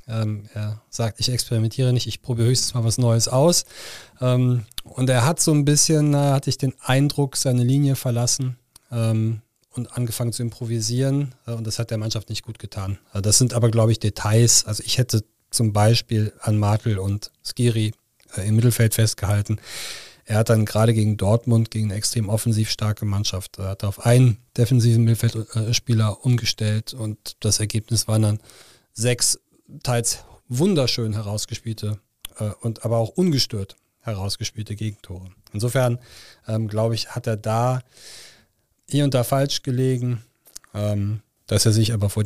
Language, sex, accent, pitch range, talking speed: German, male, German, 105-120 Hz, 150 wpm